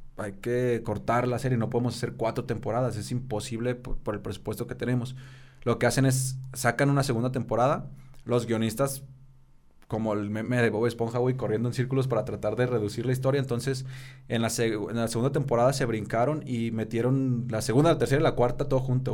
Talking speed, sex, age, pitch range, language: 205 wpm, male, 20-39, 110-130 Hz, Spanish